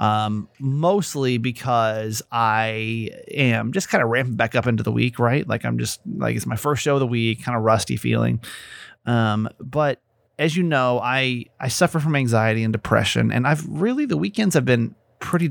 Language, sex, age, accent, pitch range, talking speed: English, male, 30-49, American, 110-130 Hz, 195 wpm